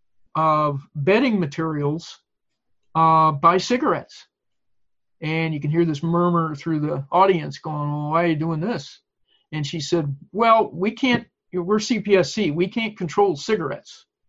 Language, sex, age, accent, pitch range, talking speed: English, male, 50-69, American, 150-190 Hz, 145 wpm